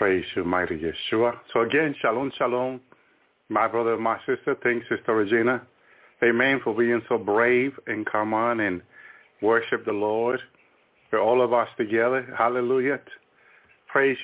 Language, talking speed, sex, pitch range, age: English, 150 wpm, male, 115-135 Hz, 50-69